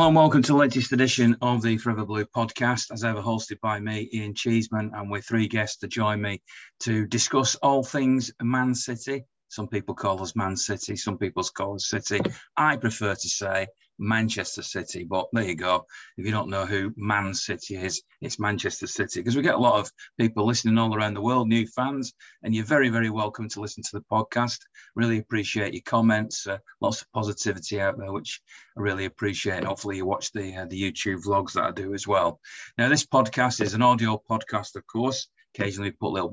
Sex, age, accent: male, 40-59, British